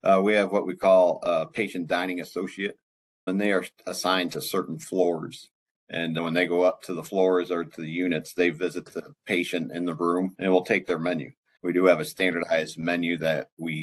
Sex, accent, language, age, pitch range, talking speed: male, American, English, 50-69, 85-95 Hz, 215 wpm